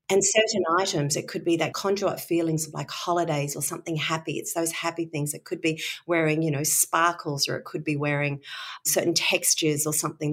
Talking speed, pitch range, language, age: 205 wpm, 150-180 Hz, English, 40-59